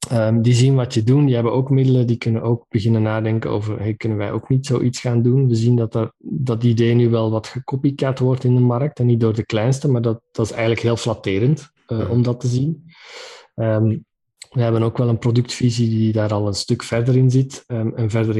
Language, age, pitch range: Dutch, 20-39, 115-130 Hz